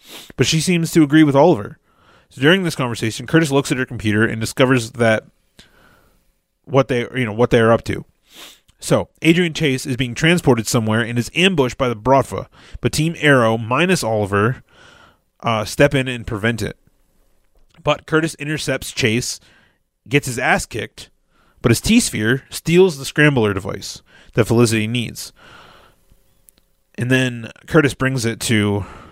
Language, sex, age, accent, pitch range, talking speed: English, male, 30-49, American, 110-145 Hz, 155 wpm